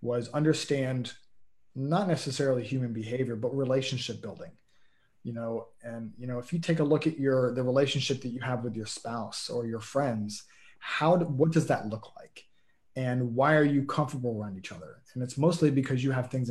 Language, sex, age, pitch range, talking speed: English, male, 30-49, 125-160 Hz, 195 wpm